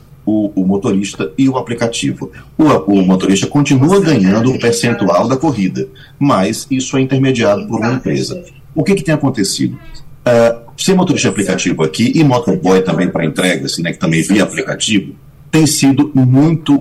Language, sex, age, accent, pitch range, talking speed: Portuguese, male, 40-59, Brazilian, 95-140 Hz, 170 wpm